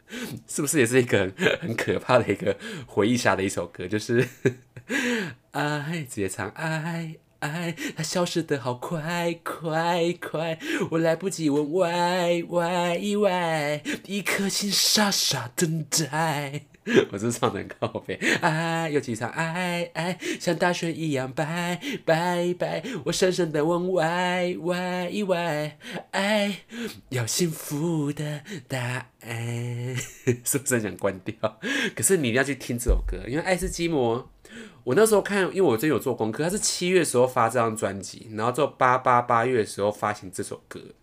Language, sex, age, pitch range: Chinese, male, 20-39, 120-175 Hz